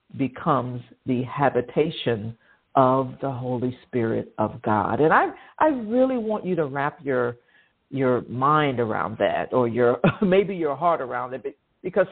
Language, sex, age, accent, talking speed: English, female, 50-69, American, 155 wpm